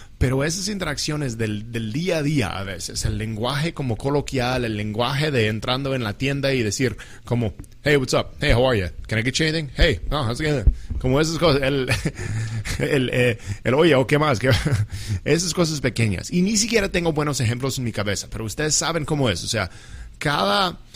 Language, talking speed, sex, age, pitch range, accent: English, 210 wpm, male, 30-49, 110-145 Hz, Mexican